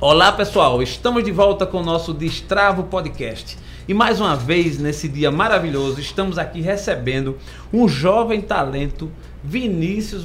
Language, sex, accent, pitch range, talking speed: Portuguese, male, Brazilian, 135-200 Hz, 140 wpm